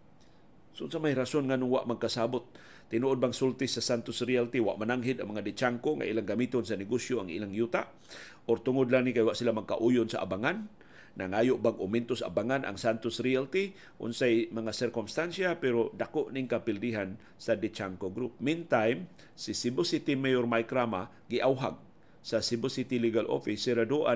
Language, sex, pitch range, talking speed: Filipino, male, 115-130 Hz, 170 wpm